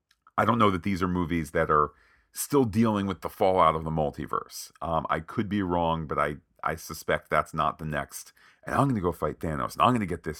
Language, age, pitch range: English, 40-59, 85-105 Hz